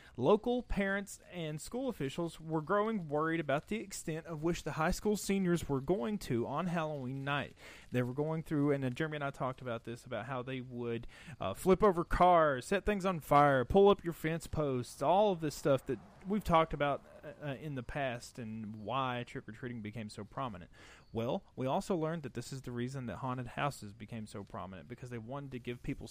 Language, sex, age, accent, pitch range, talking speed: English, male, 30-49, American, 125-185 Hz, 205 wpm